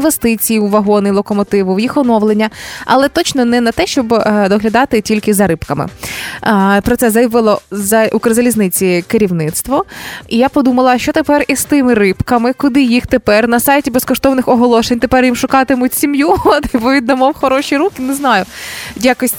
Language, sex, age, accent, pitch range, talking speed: Ukrainian, female, 20-39, native, 220-270 Hz, 145 wpm